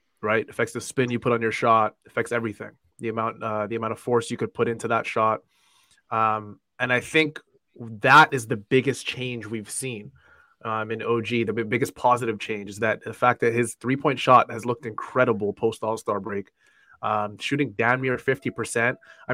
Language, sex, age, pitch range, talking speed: English, male, 20-39, 115-140 Hz, 195 wpm